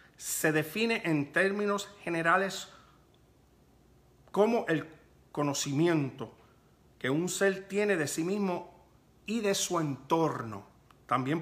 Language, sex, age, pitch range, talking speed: Spanish, male, 50-69, 130-185 Hz, 105 wpm